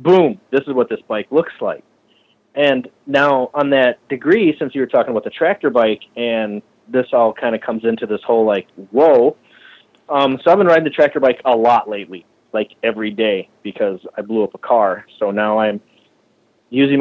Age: 30-49